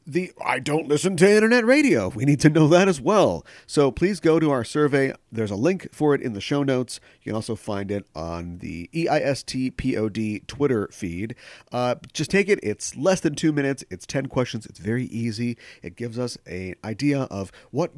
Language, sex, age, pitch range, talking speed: English, male, 40-59, 105-155 Hz, 205 wpm